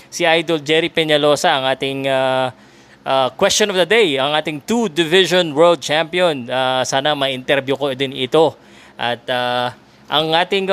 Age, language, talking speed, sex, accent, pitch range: 20-39, Filipino, 155 wpm, male, native, 135-180 Hz